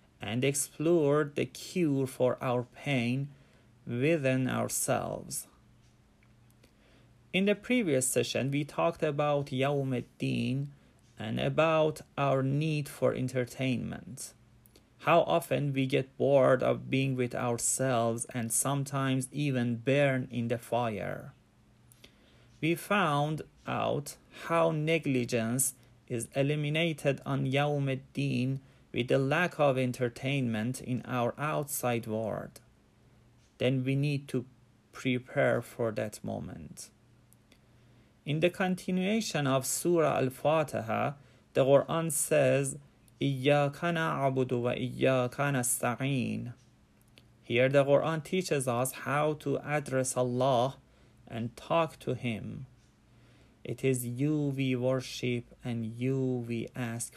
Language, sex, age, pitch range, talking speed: Persian, male, 30-49, 120-145 Hz, 110 wpm